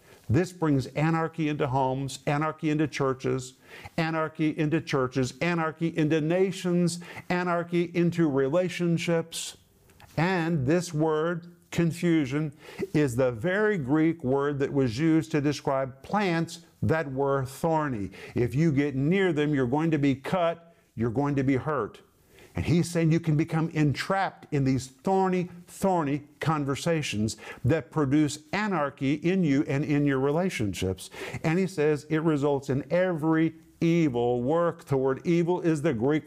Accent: American